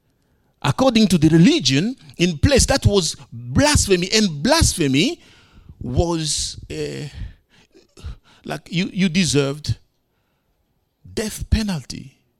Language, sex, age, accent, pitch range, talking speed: English, male, 50-69, Nigerian, 130-205 Hz, 90 wpm